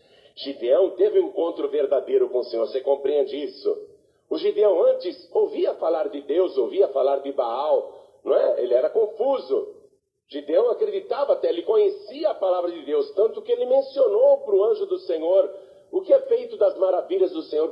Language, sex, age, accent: Portuguese, male, 50-69, Brazilian